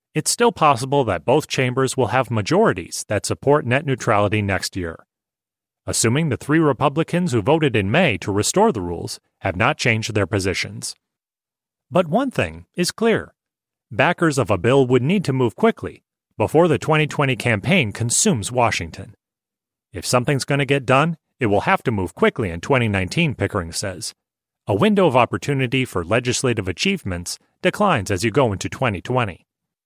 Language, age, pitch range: English, 30-49, 110-155 Hz